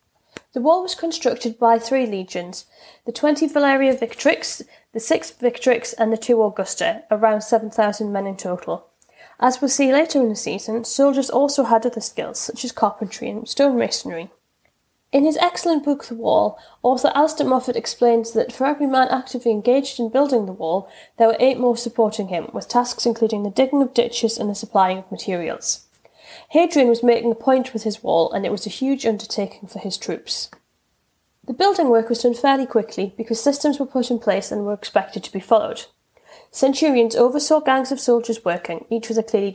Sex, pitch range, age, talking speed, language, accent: female, 215-265 Hz, 10-29, 190 wpm, English, British